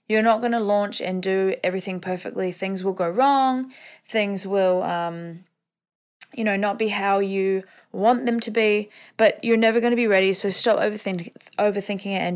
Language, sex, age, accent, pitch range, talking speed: English, female, 20-39, Australian, 185-230 Hz, 185 wpm